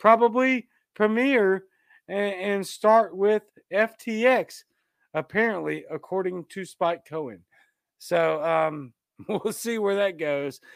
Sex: male